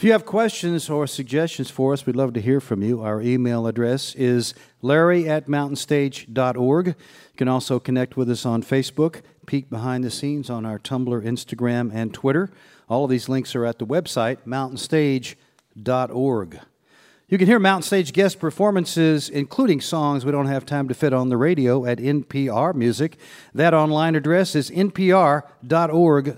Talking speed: 165 wpm